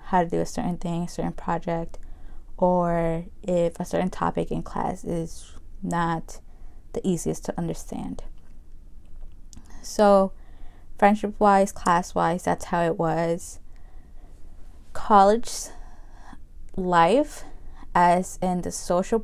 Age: 20-39